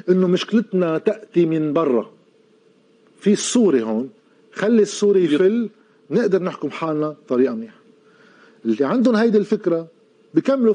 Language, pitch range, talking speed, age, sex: Arabic, 150-215 Hz, 115 wpm, 40-59, male